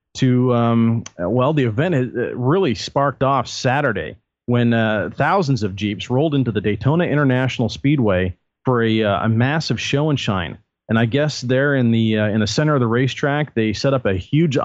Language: English